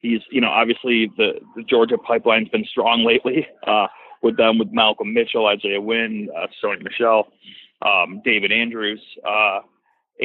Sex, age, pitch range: male, 30-49, 110-175 Hz